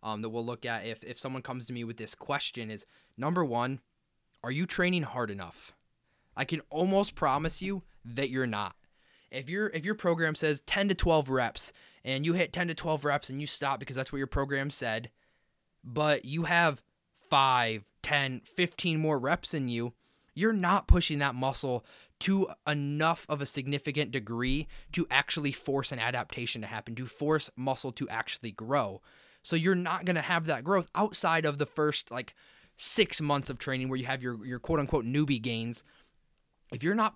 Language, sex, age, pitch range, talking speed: English, male, 20-39, 125-160 Hz, 190 wpm